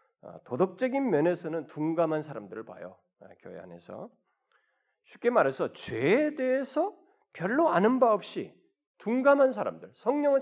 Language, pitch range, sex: Korean, 165-265 Hz, male